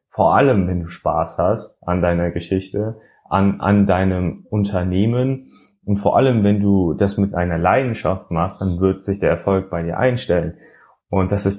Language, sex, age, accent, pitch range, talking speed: German, male, 30-49, German, 90-105 Hz, 175 wpm